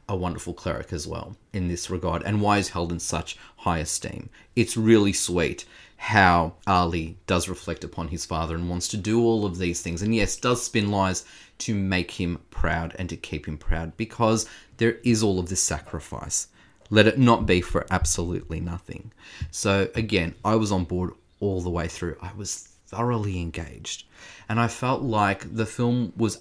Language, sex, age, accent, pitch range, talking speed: English, male, 30-49, Australian, 95-125 Hz, 185 wpm